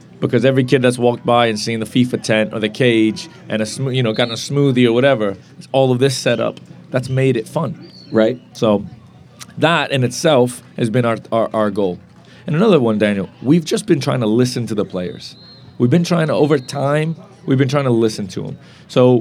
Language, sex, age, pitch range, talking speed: English, male, 30-49, 110-140 Hz, 225 wpm